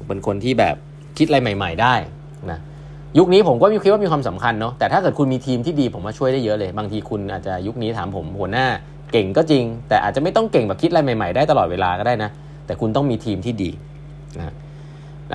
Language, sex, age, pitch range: Thai, male, 20-39, 105-145 Hz